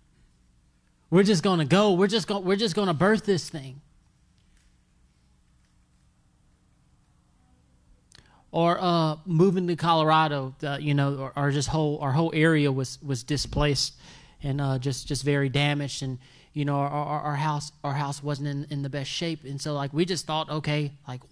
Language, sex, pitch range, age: English, male, 140-200 Hz, 20-39